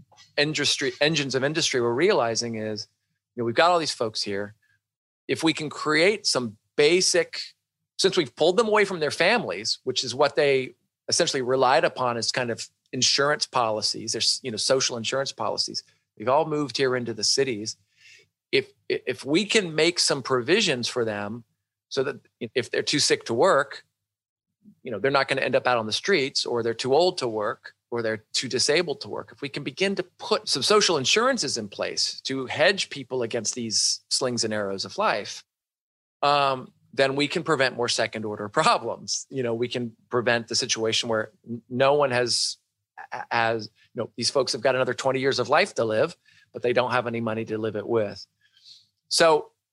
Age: 40-59